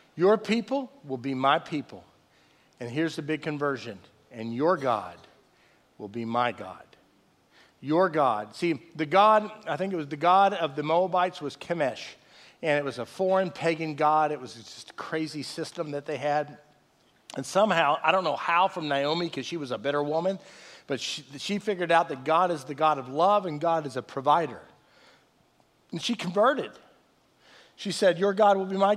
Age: 50-69